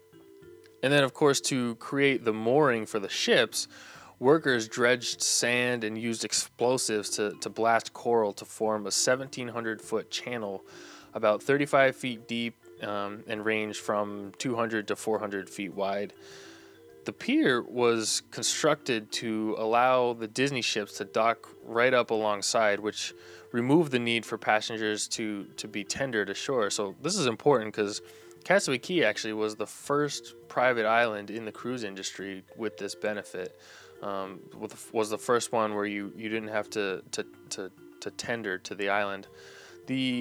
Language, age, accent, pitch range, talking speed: English, 20-39, American, 100-120 Hz, 155 wpm